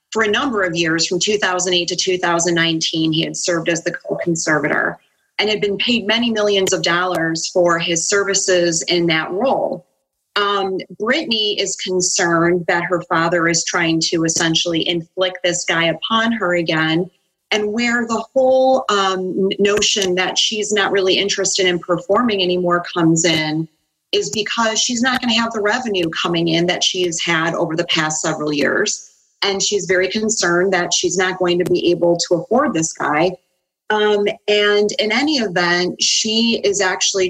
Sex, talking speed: female, 170 wpm